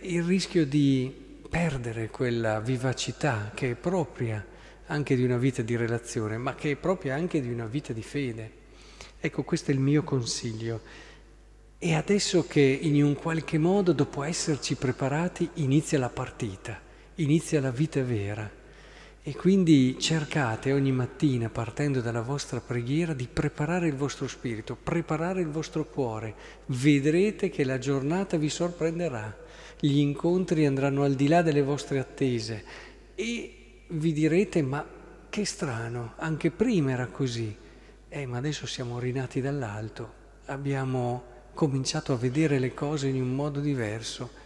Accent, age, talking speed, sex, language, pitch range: native, 50-69, 145 wpm, male, Italian, 120-155 Hz